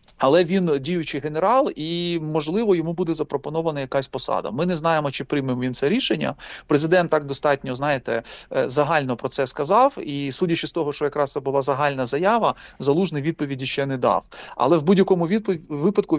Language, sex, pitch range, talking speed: Ukrainian, male, 135-165 Hz, 170 wpm